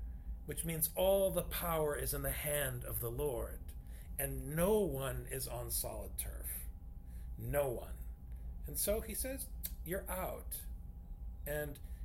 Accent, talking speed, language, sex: American, 140 wpm, English, male